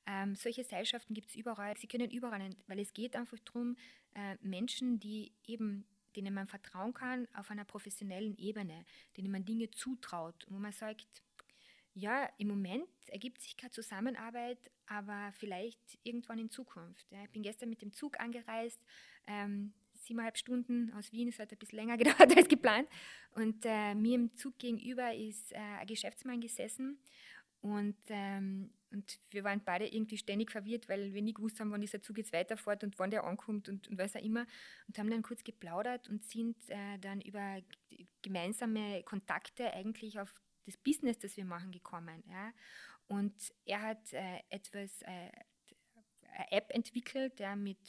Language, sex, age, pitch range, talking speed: German, female, 20-39, 200-235 Hz, 170 wpm